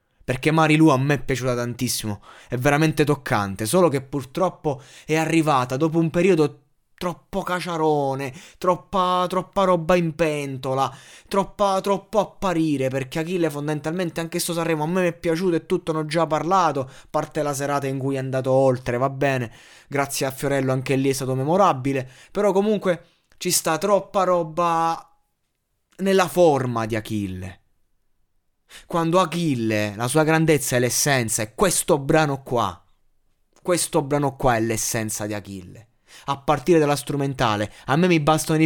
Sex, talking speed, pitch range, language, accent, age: male, 155 wpm, 125-165 Hz, Italian, native, 20-39